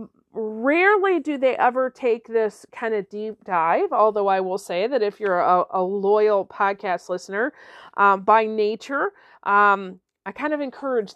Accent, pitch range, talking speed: American, 190-255 Hz, 160 wpm